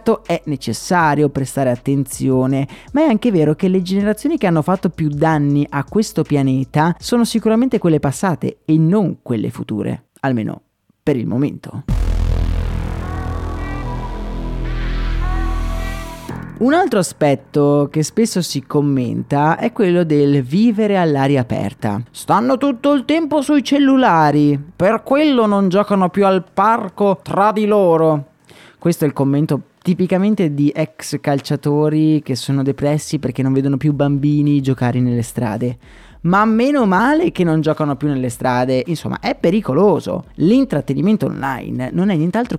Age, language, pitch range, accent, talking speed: 30-49, Italian, 140-200 Hz, native, 135 wpm